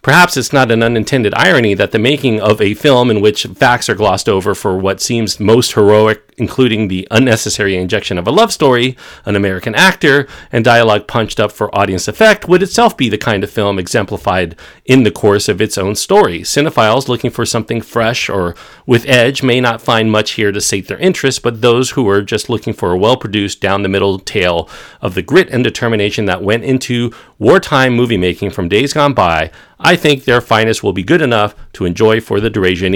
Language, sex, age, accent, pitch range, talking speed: English, male, 40-59, American, 100-130 Hz, 205 wpm